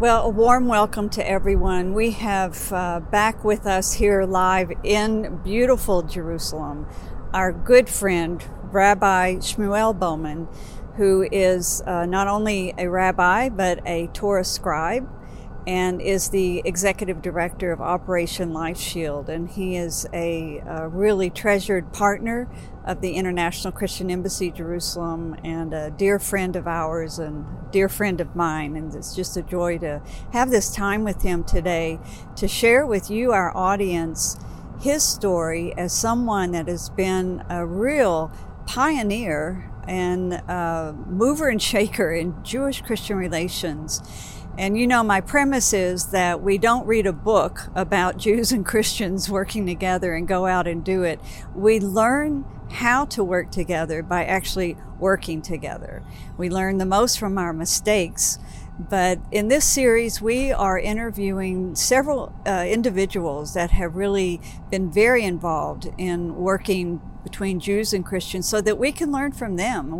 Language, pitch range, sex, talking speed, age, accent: English, 175-210 Hz, female, 150 wpm, 60-79, American